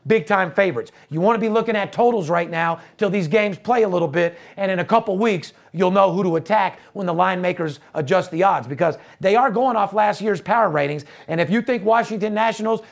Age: 40-59